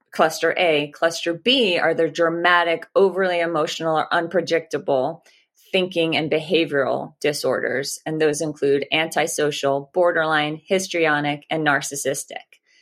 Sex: female